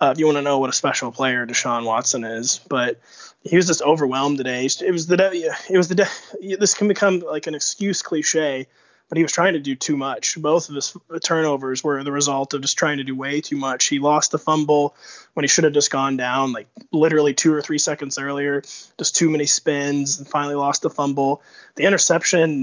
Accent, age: American, 20-39